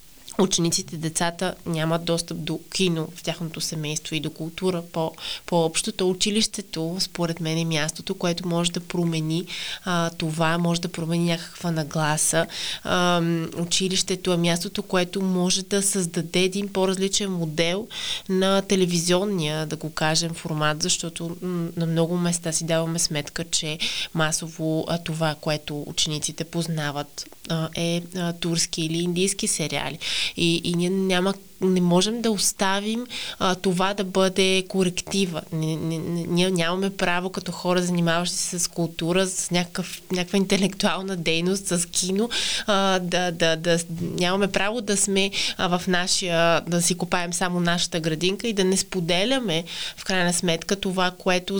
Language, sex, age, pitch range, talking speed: Bulgarian, female, 20-39, 165-190 Hz, 145 wpm